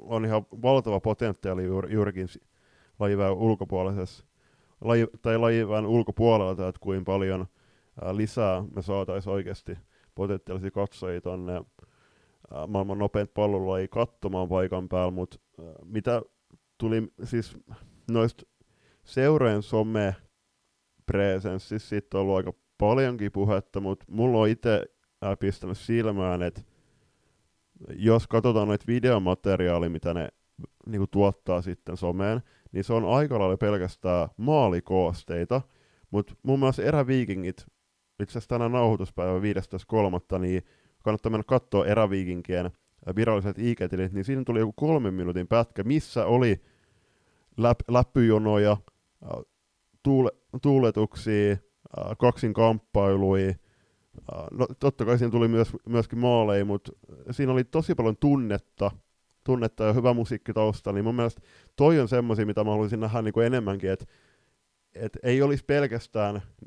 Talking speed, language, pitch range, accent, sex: 110 wpm, Finnish, 95-115 Hz, native, male